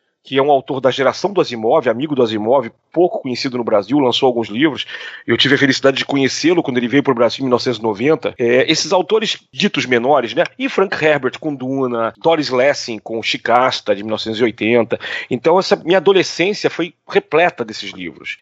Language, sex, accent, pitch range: Portuguese, male, Brazilian, 130-195 Hz